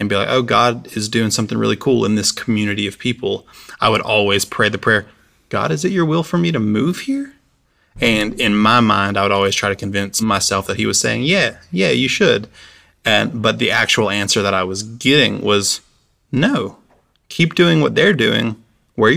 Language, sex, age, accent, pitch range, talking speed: English, male, 20-39, American, 100-115 Hz, 210 wpm